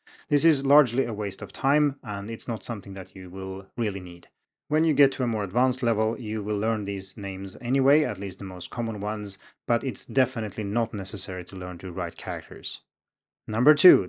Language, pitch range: Chinese, 100-135 Hz